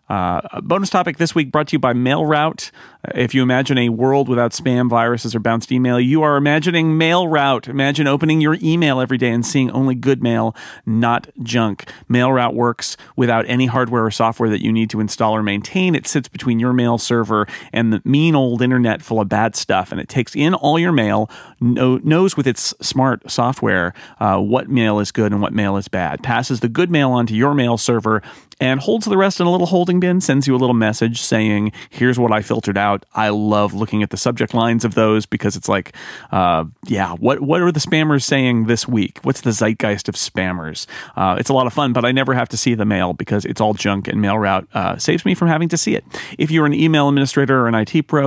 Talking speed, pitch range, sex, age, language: 225 wpm, 110-140 Hz, male, 40-59, English